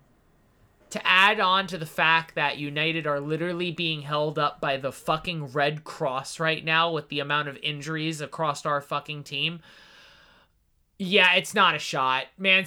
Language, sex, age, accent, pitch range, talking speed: English, male, 30-49, American, 145-175 Hz, 165 wpm